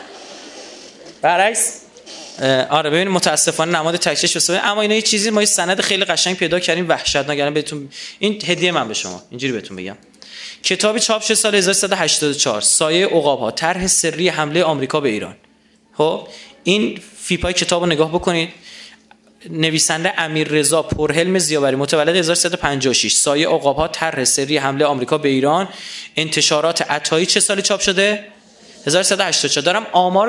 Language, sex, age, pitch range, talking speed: Persian, male, 20-39, 145-195 Hz, 145 wpm